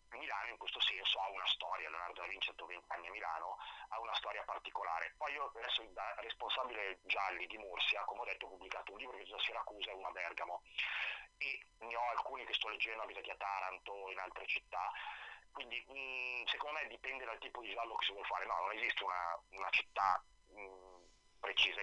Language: Italian